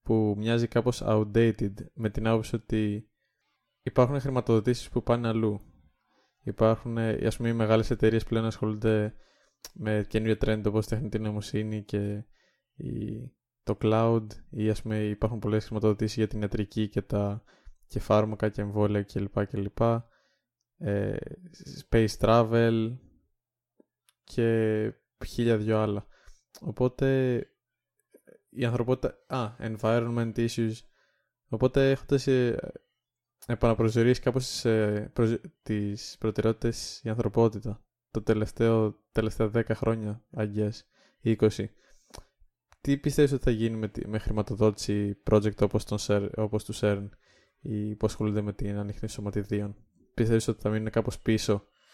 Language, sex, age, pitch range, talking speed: Greek, male, 20-39, 105-115 Hz, 125 wpm